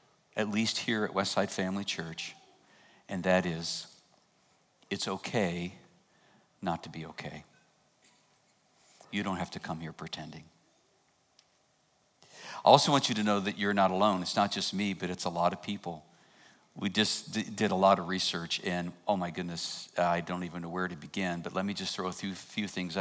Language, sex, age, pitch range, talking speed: English, male, 50-69, 90-115 Hz, 185 wpm